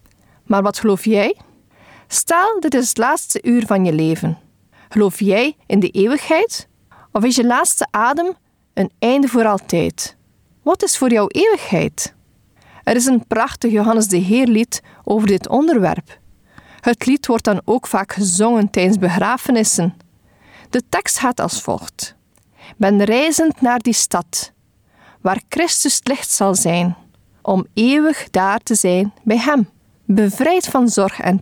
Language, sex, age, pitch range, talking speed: Dutch, female, 40-59, 195-255 Hz, 150 wpm